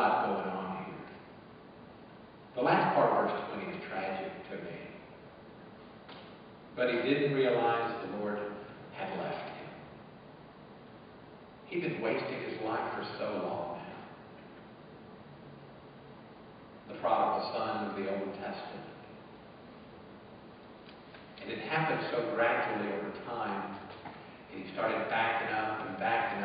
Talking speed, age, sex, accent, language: 120 wpm, 50-69, male, American, English